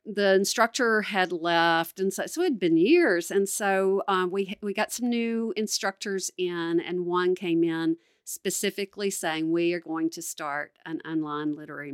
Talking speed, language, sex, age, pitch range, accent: 175 wpm, English, female, 50-69, 165-210 Hz, American